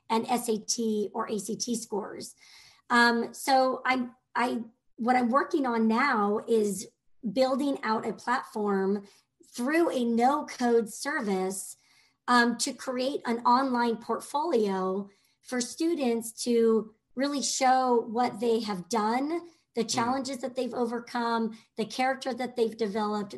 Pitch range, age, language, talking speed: 215-260 Hz, 40-59, English, 120 wpm